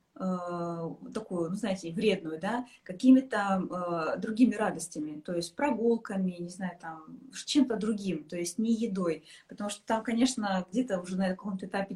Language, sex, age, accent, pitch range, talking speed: Russian, female, 20-39, native, 180-225 Hz, 155 wpm